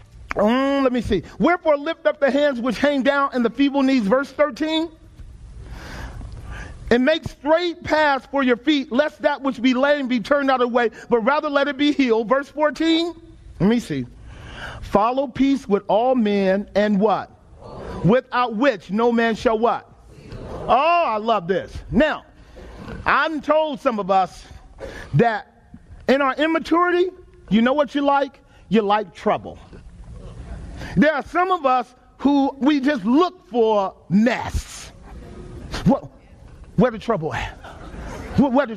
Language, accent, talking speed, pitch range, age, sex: English, American, 150 wpm, 215-295 Hz, 40-59, male